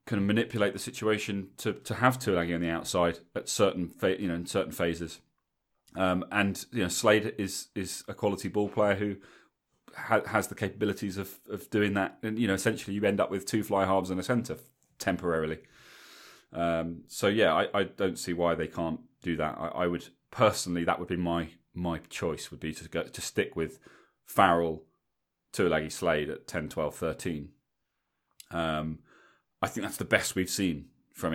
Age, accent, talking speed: 30-49, British, 190 wpm